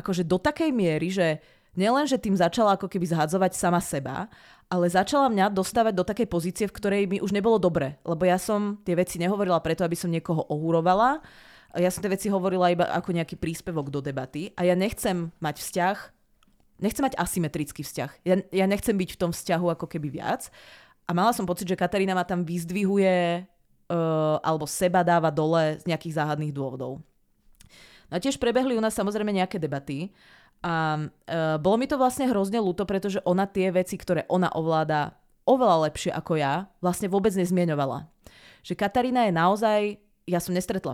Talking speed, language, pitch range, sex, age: 180 wpm, Czech, 160-200 Hz, female, 30-49